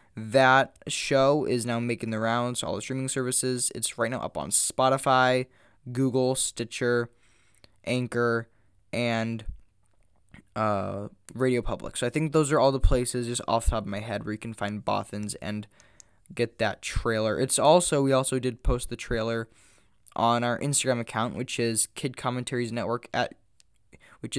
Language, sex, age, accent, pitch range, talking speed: English, male, 10-29, American, 110-130 Hz, 165 wpm